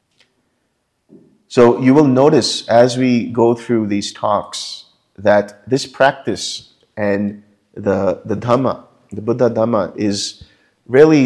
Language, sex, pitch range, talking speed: English, male, 95-120 Hz, 115 wpm